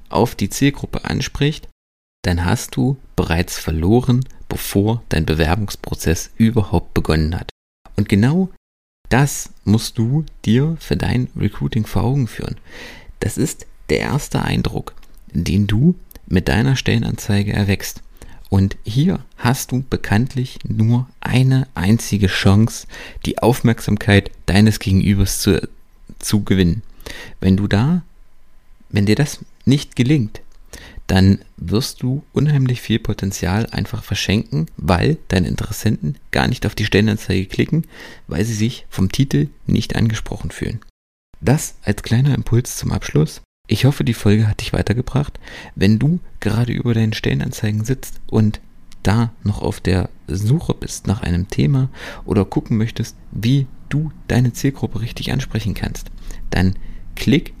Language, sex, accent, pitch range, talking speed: German, male, German, 95-125 Hz, 135 wpm